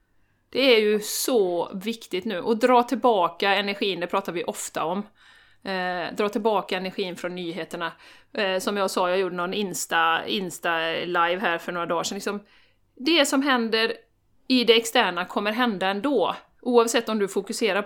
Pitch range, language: 195-265 Hz, Swedish